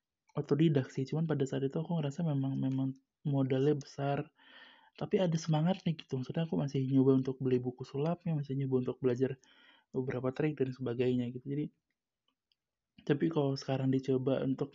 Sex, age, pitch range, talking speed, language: male, 20-39, 135-165 Hz, 165 wpm, Indonesian